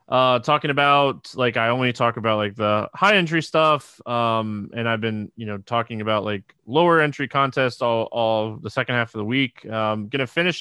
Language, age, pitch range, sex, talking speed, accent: English, 20-39, 115-145 Hz, male, 215 wpm, American